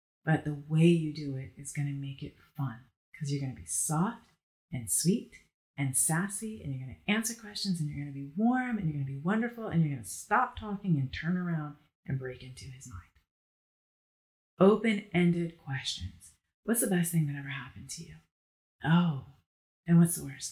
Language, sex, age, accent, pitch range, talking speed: English, female, 30-49, American, 140-195 Hz, 205 wpm